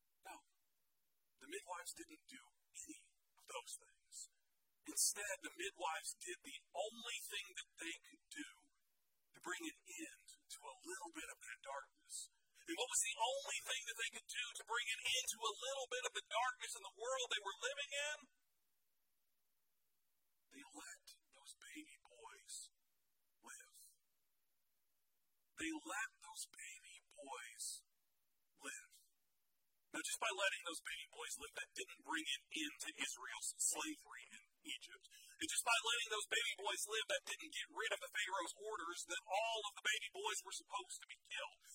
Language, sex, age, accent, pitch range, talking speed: English, male, 50-69, American, 250-420 Hz, 165 wpm